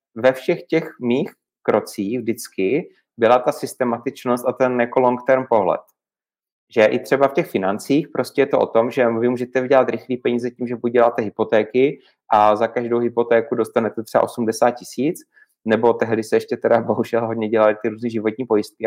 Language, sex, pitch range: Czech, male, 115-135 Hz